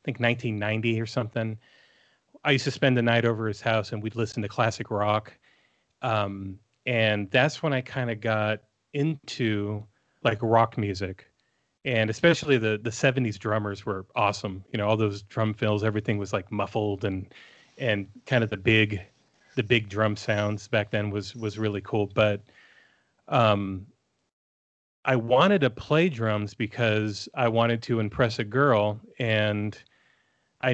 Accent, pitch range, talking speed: American, 105-120 Hz, 160 wpm